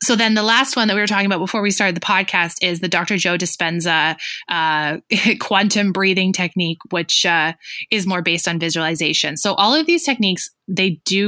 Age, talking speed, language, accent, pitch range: 20-39, 200 wpm, English, American, 170-220 Hz